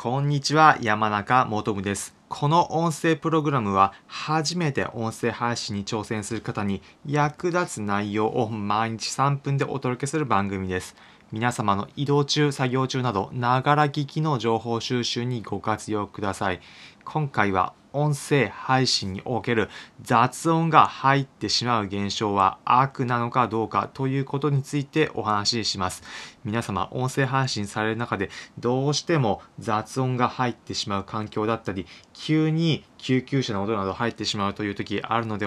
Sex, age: male, 20-39